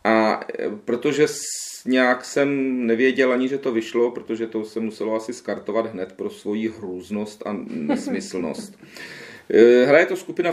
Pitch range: 115-140 Hz